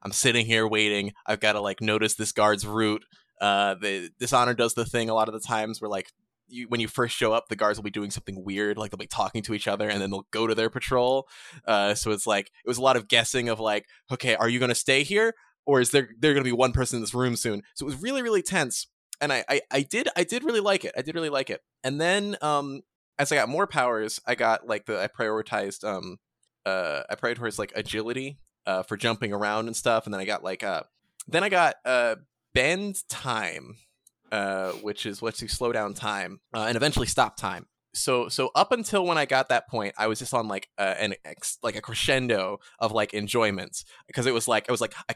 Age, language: 20-39, English